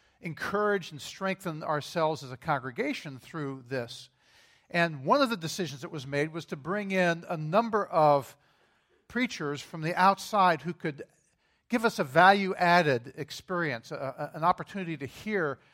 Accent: American